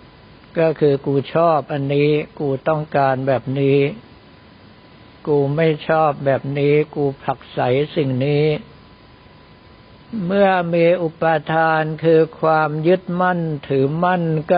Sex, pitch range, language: male, 135-155 Hz, Thai